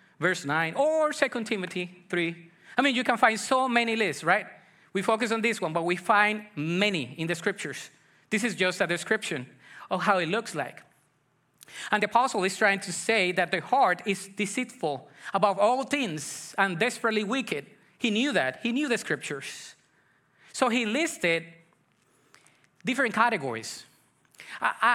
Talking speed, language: 165 wpm, English